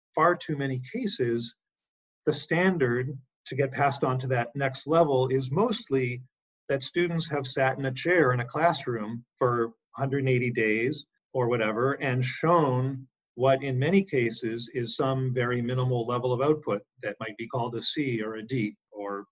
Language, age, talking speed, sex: English, 40-59, 170 wpm, male